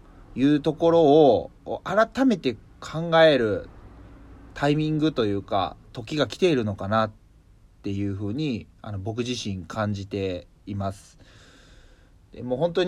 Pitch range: 100-140 Hz